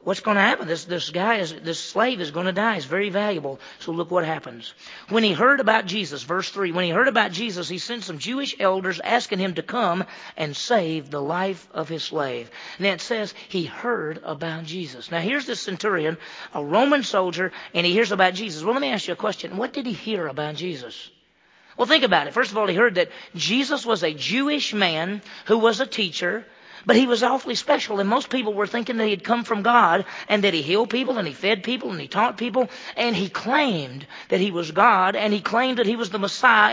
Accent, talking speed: American, 235 wpm